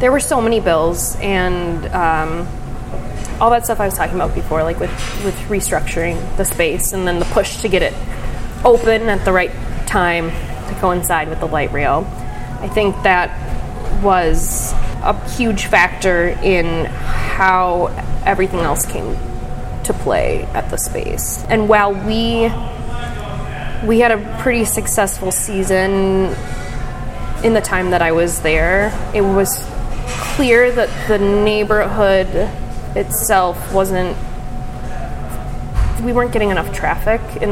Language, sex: English, female